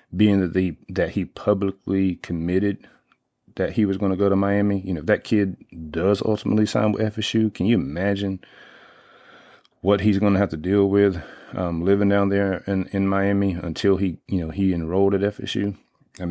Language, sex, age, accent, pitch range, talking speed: English, male, 30-49, American, 90-105 Hz, 190 wpm